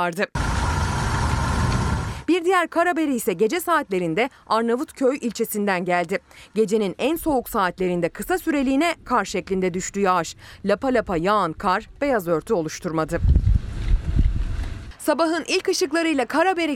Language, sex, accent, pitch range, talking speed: Turkish, female, native, 190-280 Hz, 110 wpm